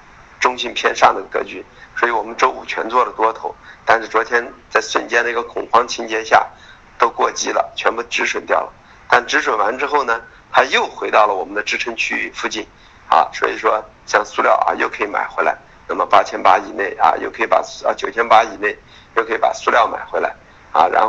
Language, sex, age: Chinese, male, 50-69